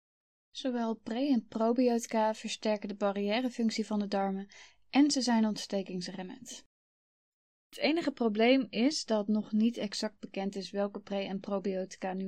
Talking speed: 140 wpm